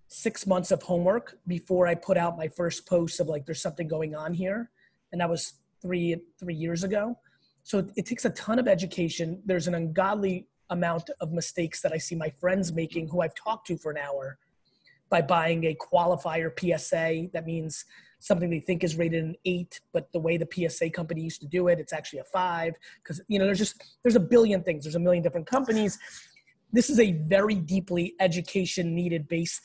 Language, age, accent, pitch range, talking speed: English, 20-39, American, 170-200 Hz, 205 wpm